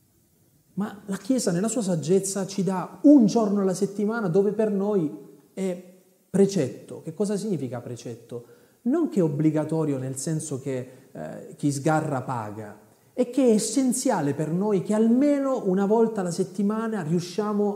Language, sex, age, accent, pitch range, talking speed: Italian, male, 30-49, native, 120-185 Hz, 150 wpm